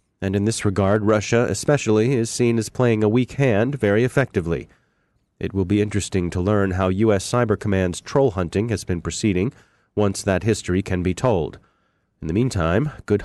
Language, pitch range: English, 95-125 Hz